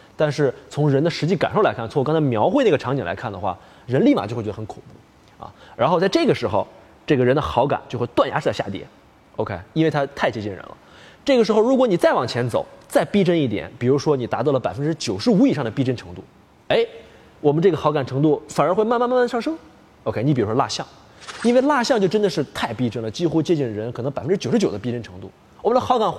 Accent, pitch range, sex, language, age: native, 115-190 Hz, male, Chinese, 20-39